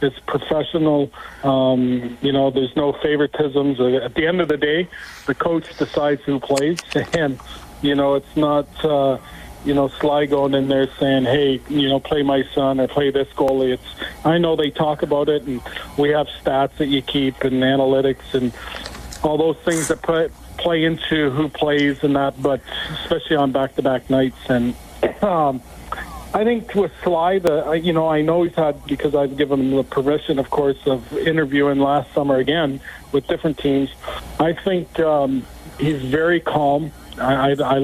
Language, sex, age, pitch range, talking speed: English, male, 40-59, 135-155 Hz, 180 wpm